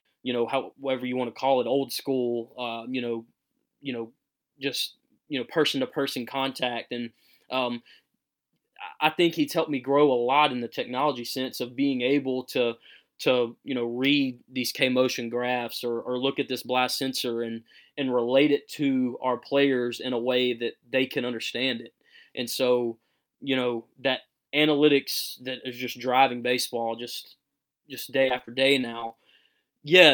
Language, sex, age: English, male, 20-39